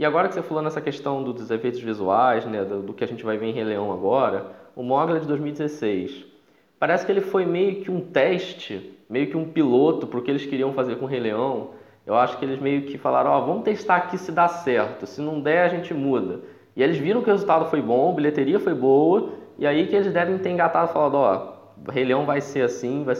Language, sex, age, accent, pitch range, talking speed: Portuguese, male, 20-39, Brazilian, 115-175 Hz, 245 wpm